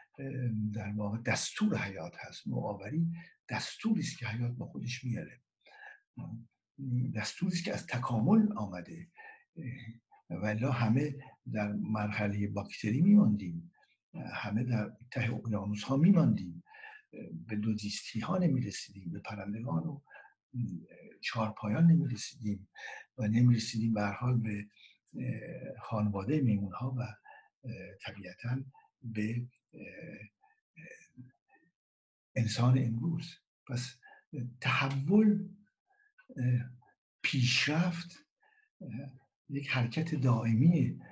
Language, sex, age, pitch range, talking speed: Persian, male, 60-79, 110-165 Hz, 90 wpm